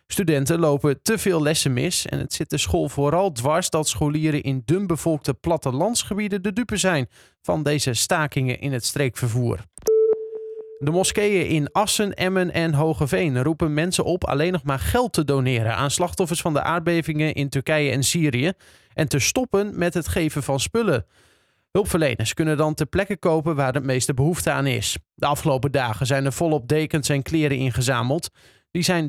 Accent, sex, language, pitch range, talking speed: Dutch, male, Dutch, 140-185 Hz, 175 wpm